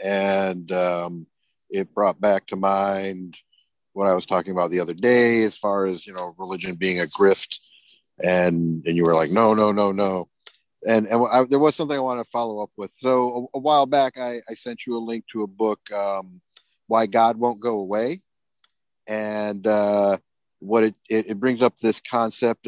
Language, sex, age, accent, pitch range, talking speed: English, male, 50-69, American, 105-135 Hz, 200 wpm